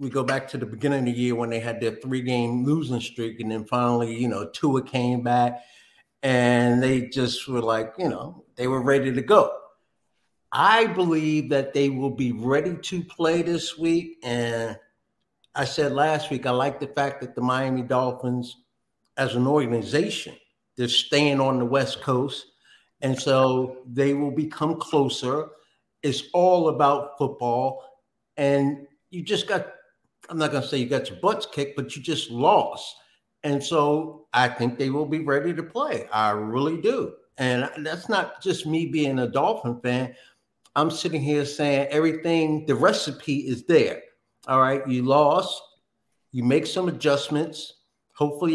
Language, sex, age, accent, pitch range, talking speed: English, male, 50-69, American, 125-155 Hz, 170 wpm